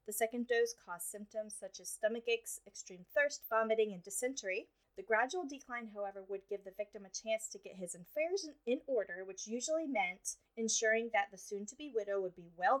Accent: American